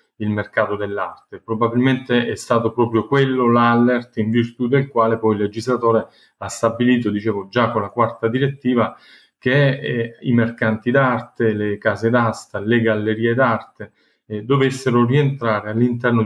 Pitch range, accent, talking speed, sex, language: 110-130 Hz, native, 145 wpm, male, Italian